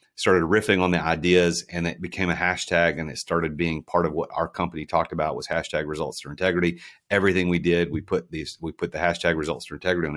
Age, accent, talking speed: 40-59, American, 235 wpm